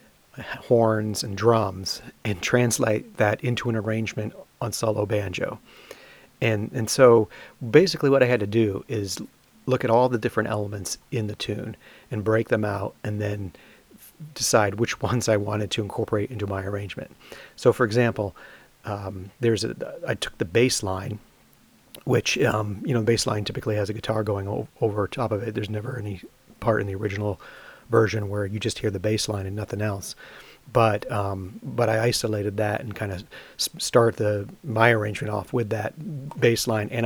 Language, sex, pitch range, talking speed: English, male, 105-115 Hz, 180 wpm